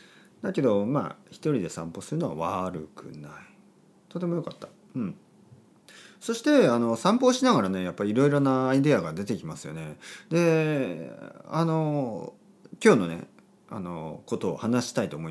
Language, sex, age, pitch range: Japanese, male, 40-59, 120-195 Hz